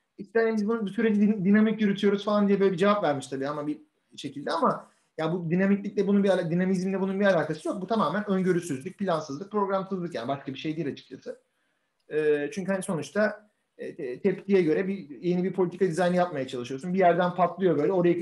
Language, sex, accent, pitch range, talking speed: Turkish, male, native, 160-195 Hz, 200 wpm